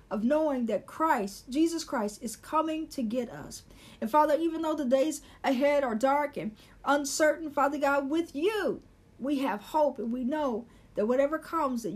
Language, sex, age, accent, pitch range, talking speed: English, female, 50-69, American, 235-290 Hz, 180 wpm